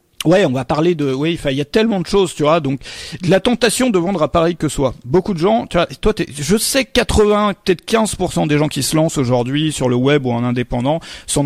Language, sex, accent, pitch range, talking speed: French, male, French, 155-205 Hz, 255 wpm